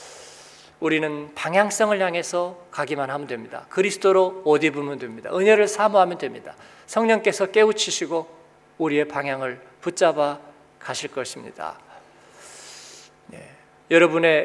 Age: 40-59